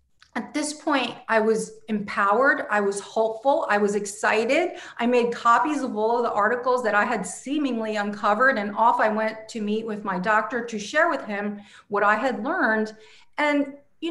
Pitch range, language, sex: 215-265 Hz, English, female